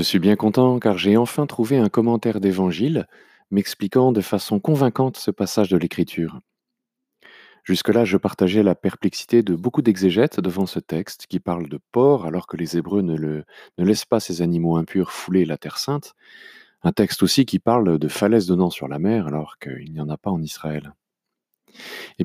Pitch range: 85-120 Hz